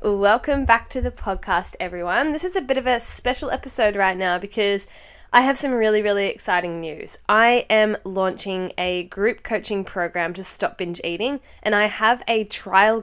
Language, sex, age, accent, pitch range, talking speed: English, female, 10-29, Australian, 195-245 Hz, 185 wpm